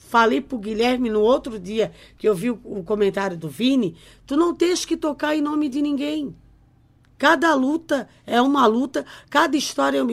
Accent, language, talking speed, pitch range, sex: Brazilian, Portuguese, 190 wpm, 215-340 Hz, female